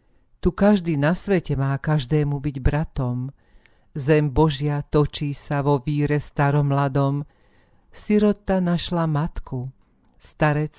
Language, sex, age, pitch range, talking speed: Slovak, female, 50-69, 140-165 Hz, 110 wpm